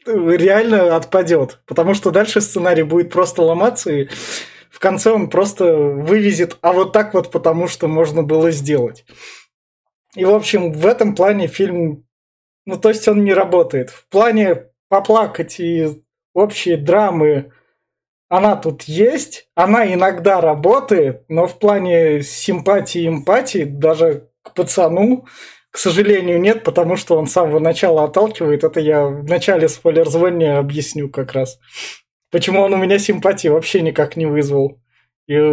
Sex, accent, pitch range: male, native, 160-200 Hz